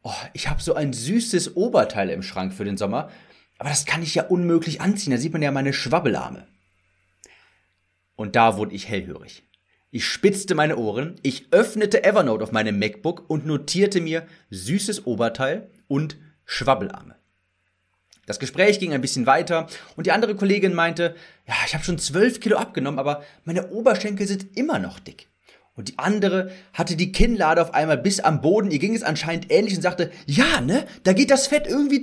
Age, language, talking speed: 30-49, German, 180 wpm